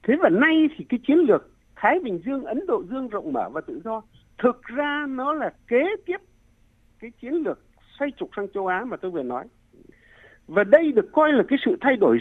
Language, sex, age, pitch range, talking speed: Vietnamese, male, 60-79, 205-305 Hz, 220 wpm